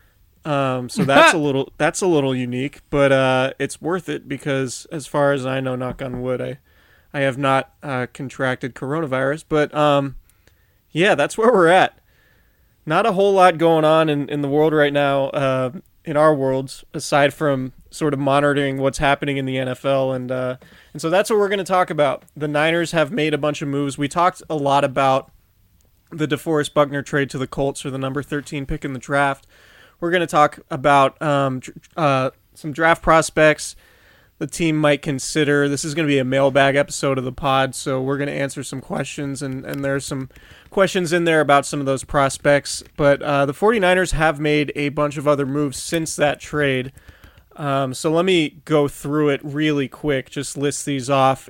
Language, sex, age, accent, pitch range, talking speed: English, male, 20-39, American, 135-155 Hz, 200 wpm